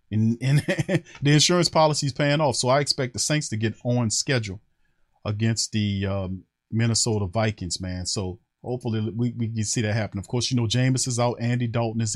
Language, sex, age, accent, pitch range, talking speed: English, male, 40-59, American, 115-140 Hz, 200 wpm